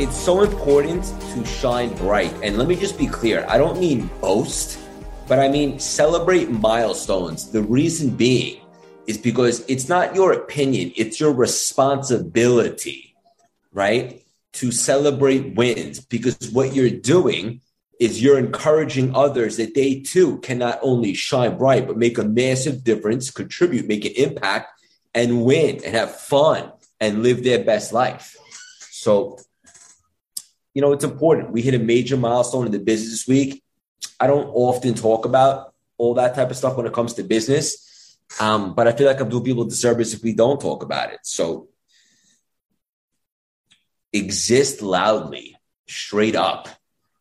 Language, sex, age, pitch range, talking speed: English, male, 30-49, 115-135 Hz, 155 wpm